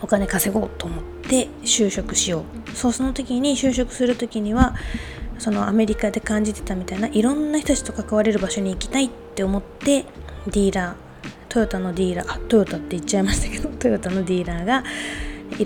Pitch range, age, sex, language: 195-250 Hz, 20-39, female, Japanese